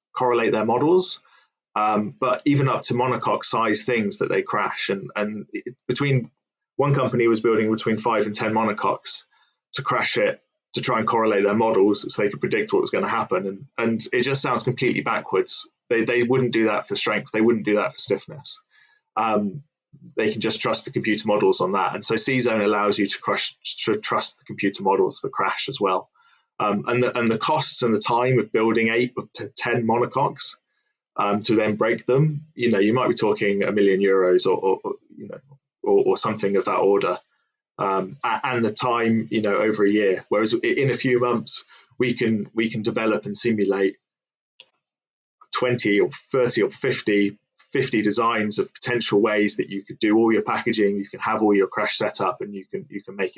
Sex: male